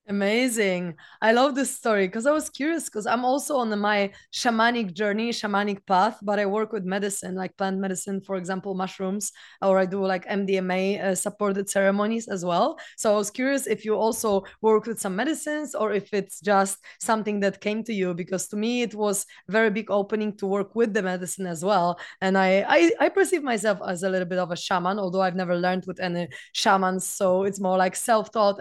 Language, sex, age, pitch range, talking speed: English, female, 20-39, 190-220 Hz, 205 wpm